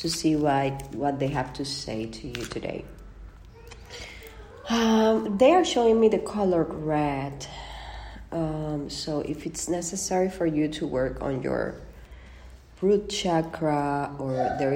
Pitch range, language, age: 140-190 Hz, English, 30-49